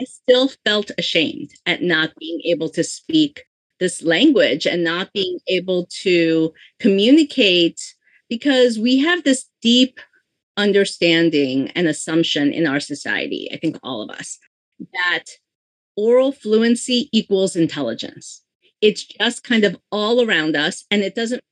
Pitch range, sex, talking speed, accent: 175-235 Hz, female, 135 wpm, American